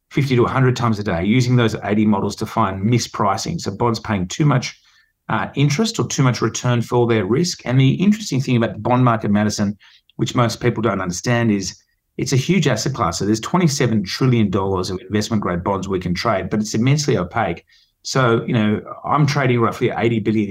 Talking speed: 205 wpm